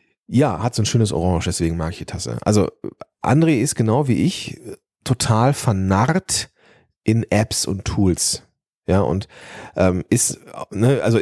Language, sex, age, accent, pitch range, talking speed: German, male, 30-49, German, 100-125 Hz, 155 wpm